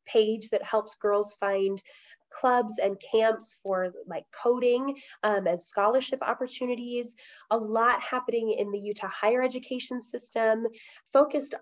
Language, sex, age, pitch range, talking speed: English, female, 20-39, 200-235 Hz, 130 wpm